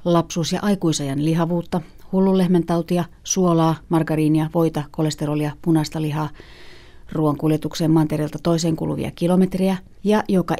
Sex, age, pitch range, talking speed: female, 30-49, 150-175 Hz, 100 wpm